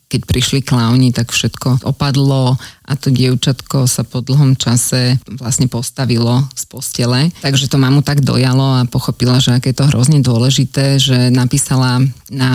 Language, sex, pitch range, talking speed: Slovak, female, 130-145 Hz, 155 wpm